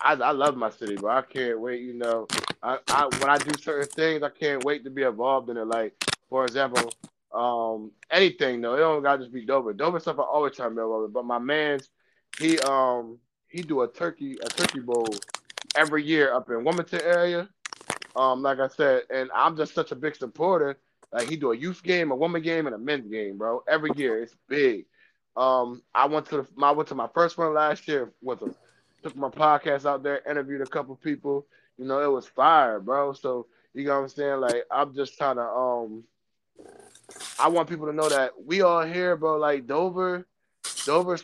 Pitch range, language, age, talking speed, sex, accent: 125-160 Hz, English, 20-39, 215 wpm, male, American